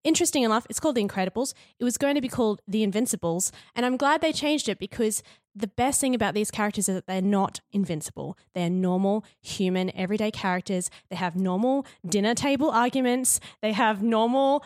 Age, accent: 20-39, Australian